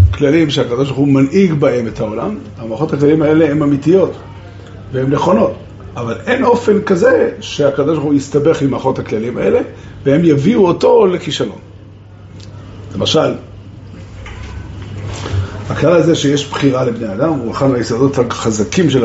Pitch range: 105-165 Hz